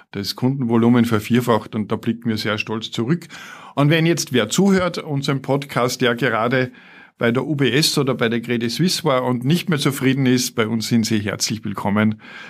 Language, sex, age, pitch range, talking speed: German, male, 50-69, 115-145 Hz, 185 wpm